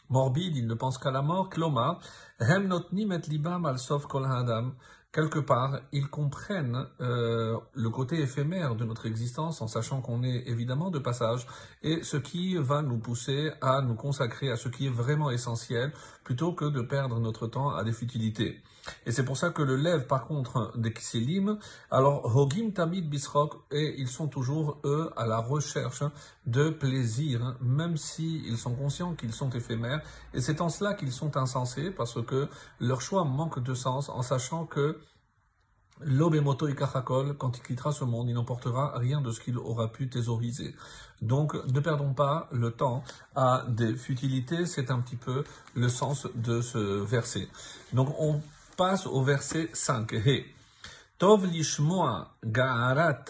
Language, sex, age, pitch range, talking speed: French, male, 50-69, 120-150 Hz, 160 wpm